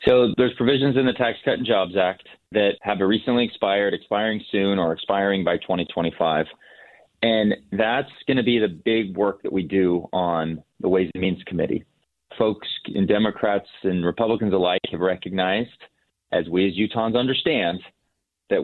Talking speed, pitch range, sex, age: 160 wpm, 95-115 Hz, male, 30-49